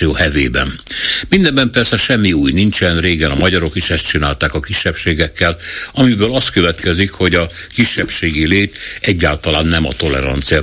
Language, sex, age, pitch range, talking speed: Hungarian, male, 60-79, 80-95 Hz, 135 wpm